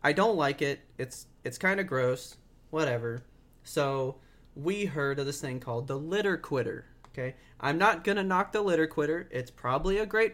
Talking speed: 190 wpm